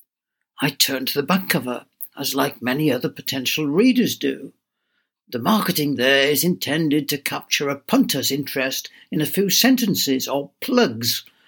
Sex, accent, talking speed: male, British, 150 wpm